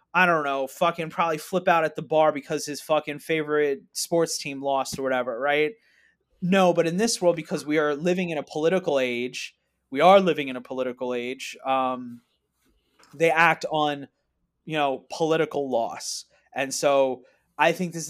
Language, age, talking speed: English, 30-49, 175 wpm